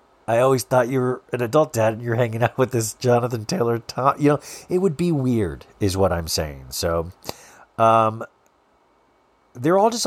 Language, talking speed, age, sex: English, 190 wpm, 40-59, male